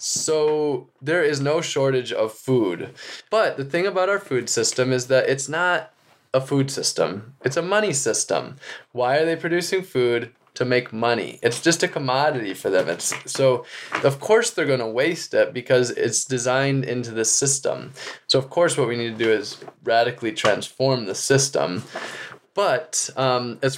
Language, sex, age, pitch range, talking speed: English, male, 20-39, 120-140 Hz, 175 wpm